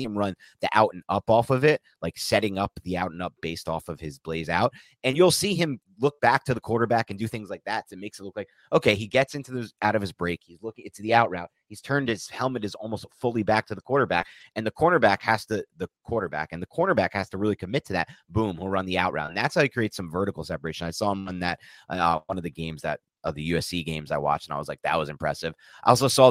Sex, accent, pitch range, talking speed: male, American, 85-115 Hz, 285 wpm